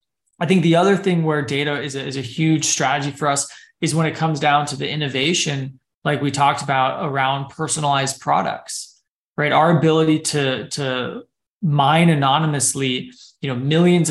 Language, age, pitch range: English, 20-39, 135-170 Hz